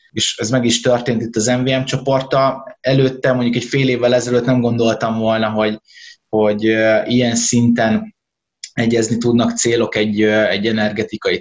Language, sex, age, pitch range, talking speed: Hungarian, male, 20-39, 115-130 Hz, 145 wpm